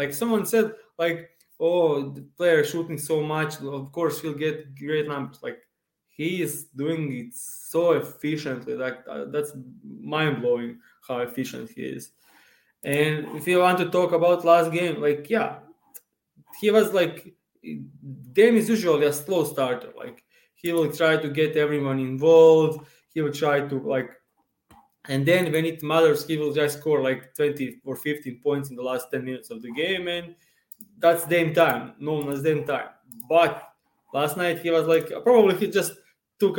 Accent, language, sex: Serbian, English, male